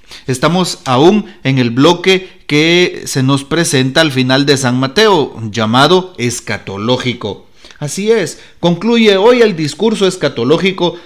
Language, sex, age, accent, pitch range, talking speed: Spanish, male, 40-59, Mexican, 120-175 Hz, 125 wpm